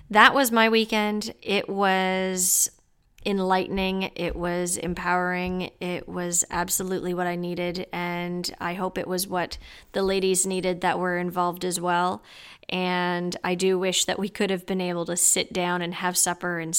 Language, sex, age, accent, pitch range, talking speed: English, female, 20-39, American, 180-200 Hz, 170 wpm